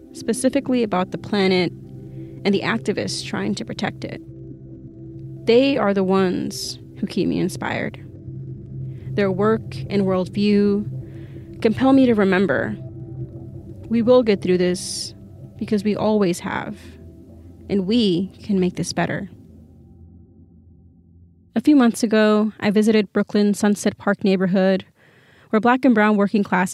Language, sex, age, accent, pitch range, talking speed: English, female, 30-49, American, 170-210 Hz, 130 wpm